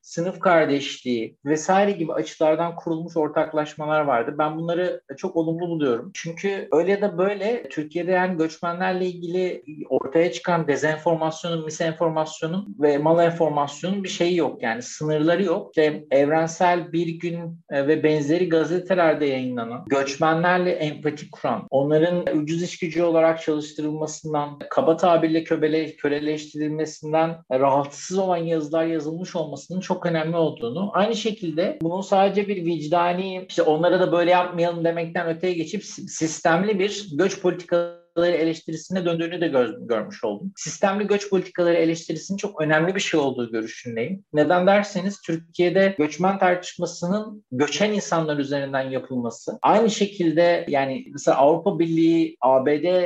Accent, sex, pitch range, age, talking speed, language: native, male, 155-180 Hz, 50-69, 125 wpm, Turkish